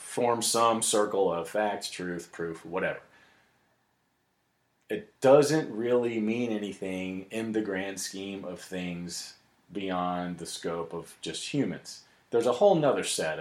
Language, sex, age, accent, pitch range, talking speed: English, male, 40-59, American, 85-115 Hz, 135 wpm